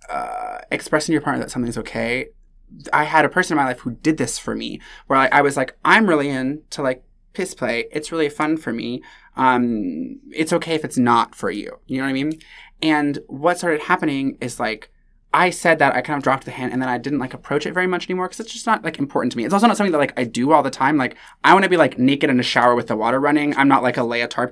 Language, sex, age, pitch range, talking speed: English, male, 20-39, 125-165 Hz, 280 wpm